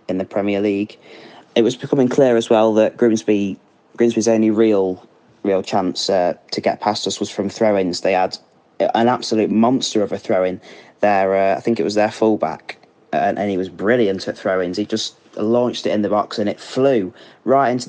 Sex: male